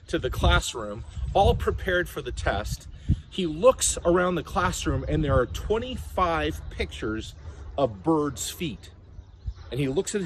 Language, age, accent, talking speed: English, 40-59, American, 145 wpm